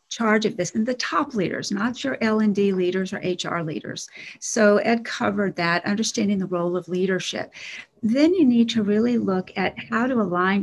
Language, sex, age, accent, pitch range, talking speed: English, female, 50-69, American, 185-230 Hz, 185 wpm